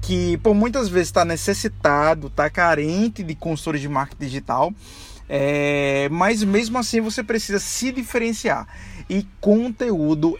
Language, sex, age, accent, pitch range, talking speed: Portuguese, male, 20-39, Brazilian, 145-190 Hz, 125 wpm